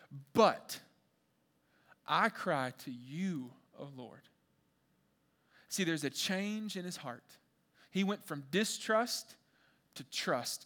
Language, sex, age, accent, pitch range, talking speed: English, male, 30-49, American, 150-210 Hz, 115 wpm